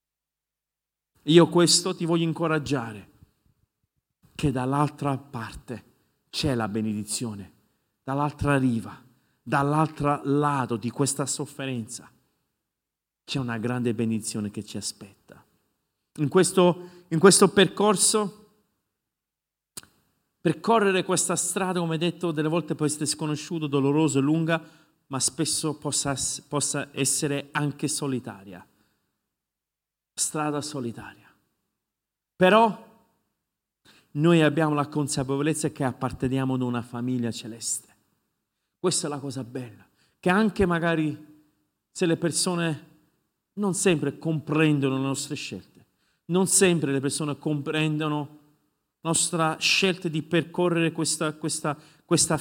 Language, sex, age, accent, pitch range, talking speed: Italian, male, 50-69, native, 135-165 Hz, 105 wpm